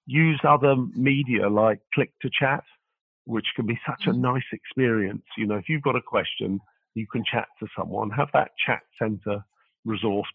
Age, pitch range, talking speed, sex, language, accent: 50-69, 105-125 Hz, 180 wpm, male, English, British